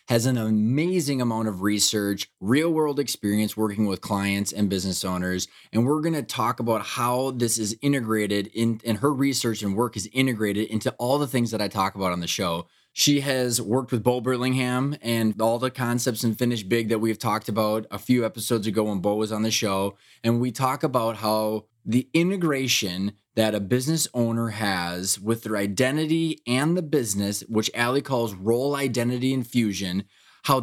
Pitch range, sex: 110-130 Hz, male